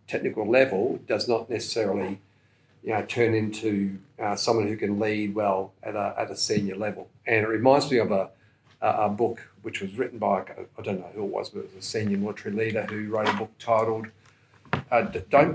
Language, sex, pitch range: English, male, 100-120 Hz